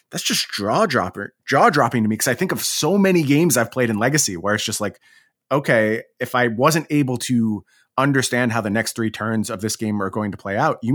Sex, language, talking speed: male, English, 230 wpm